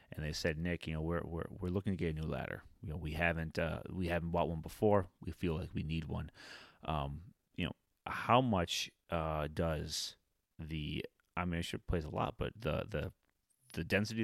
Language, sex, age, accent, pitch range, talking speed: English, male, 30-49, American, 80-95 Hz, 210 wpm